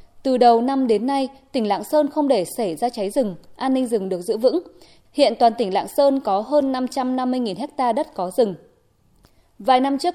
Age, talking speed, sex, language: 20-39, 205 wpm, female, Vietnamese